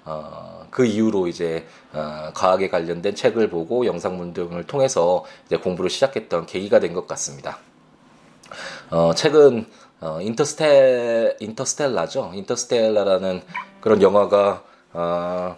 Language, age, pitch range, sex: Korean, 20-39, 85-110 Hz, male